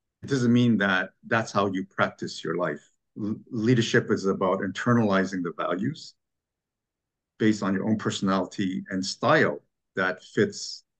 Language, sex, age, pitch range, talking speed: English, male, 50-69, 100-120 Hz, 135 wpm